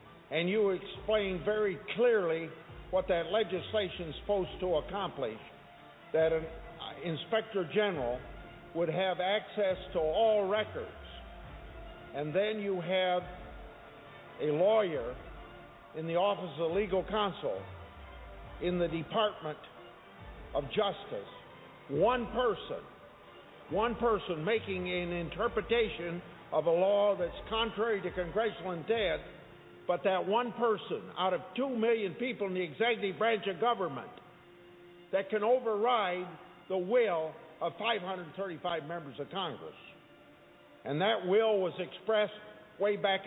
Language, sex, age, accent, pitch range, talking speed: English, male, 50-69, American, 165-210 Hz, 120 wpm